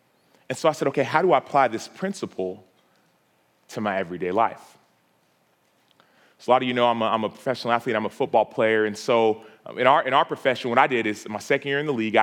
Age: 30-49